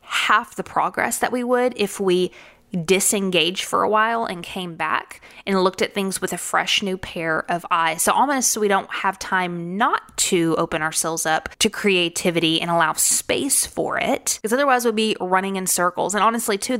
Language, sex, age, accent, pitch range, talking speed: English, female, 20-39, American, 175-215 Hz, 195 wpm